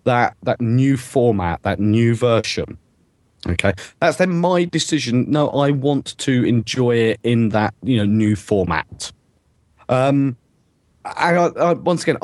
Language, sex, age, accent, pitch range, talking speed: English, male, 30-49, British, 100-140 Hz, 145 wpm